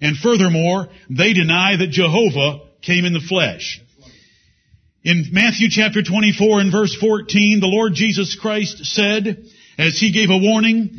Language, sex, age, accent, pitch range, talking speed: English, male, 60-79, American, 170-220 Hz, 145 wpm